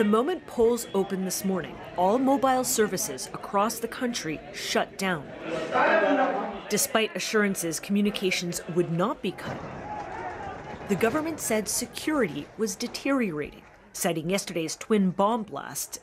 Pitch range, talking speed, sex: 195-270 Hz, 120 wpm, female